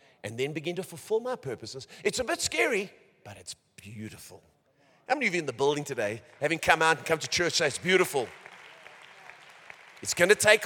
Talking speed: 195 wpm